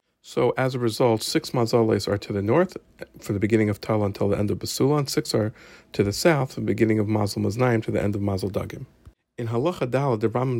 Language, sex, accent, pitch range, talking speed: English, male, American, 100-125 Hz, 240 wpm